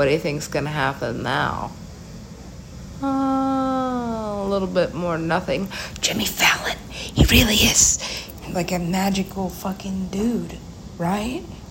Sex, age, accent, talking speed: female, 50-69, American, 130 wpm